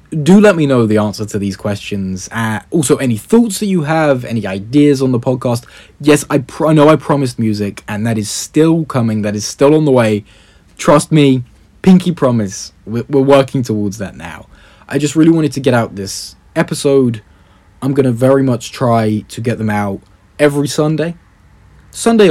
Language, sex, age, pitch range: English, male, 20-39, 105-145 Hz